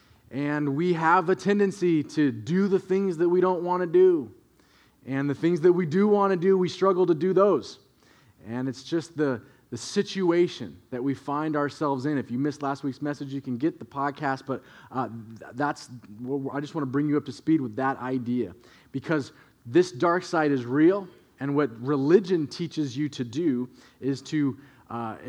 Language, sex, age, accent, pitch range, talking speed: English, male, 30-49, American, 135-190 Hz, 195 wpm